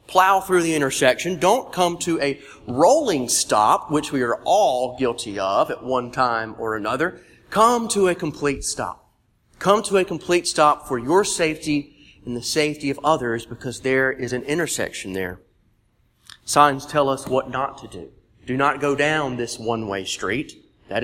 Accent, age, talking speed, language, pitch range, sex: American, 40-59, 170 wpm, English, 115-155 Hz, male